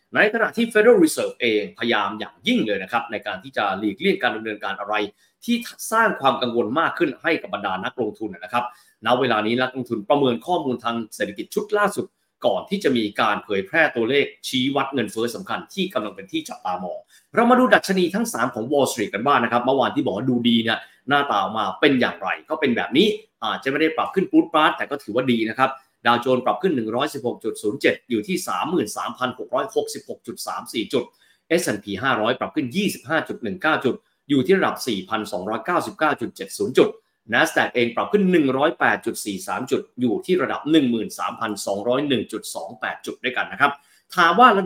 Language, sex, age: Thai, male, 20-39